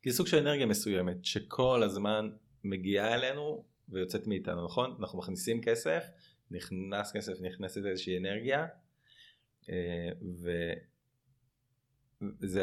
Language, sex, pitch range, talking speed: Hebrew, male, 95-125 Hz, 105 wpm